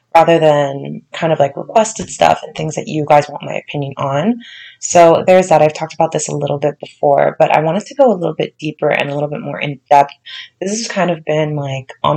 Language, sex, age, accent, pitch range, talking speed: English, female, 20-39, American, 145-180 Hz, 245 wpm